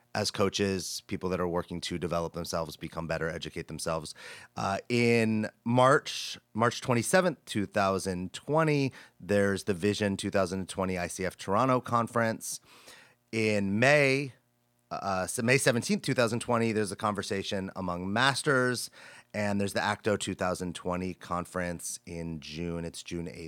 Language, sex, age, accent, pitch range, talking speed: English, male, 30-49, American, 85-105 Hz, 120 wpm